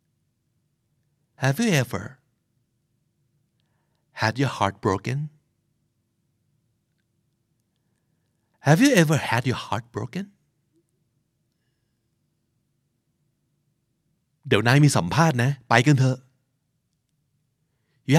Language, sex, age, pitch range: Thai, male, 50-69, 130-155 Hz